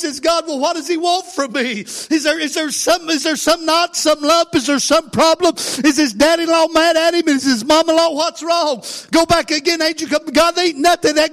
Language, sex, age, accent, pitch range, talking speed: English, male, 50-69, American, 215-320 Hz, 235 wpm